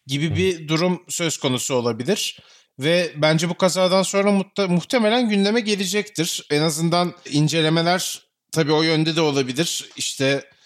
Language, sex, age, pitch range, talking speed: Turkish, male, 30-49, 135-180 Hz, 130 wpm